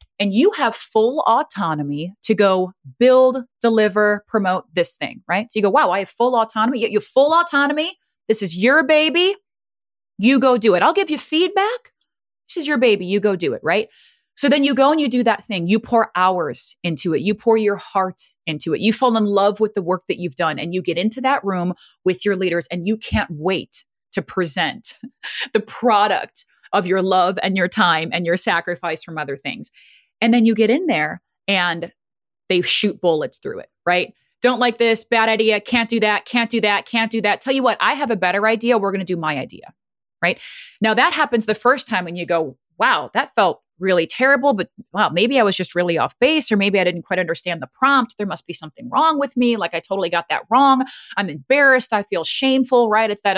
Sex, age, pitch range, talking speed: female, 30-49, 185-250 Hz, 225 wpm